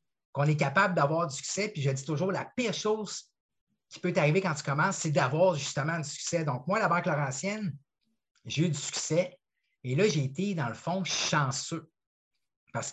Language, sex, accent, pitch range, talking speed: French, male, Canadian, 140-180 Hz, 195 wpm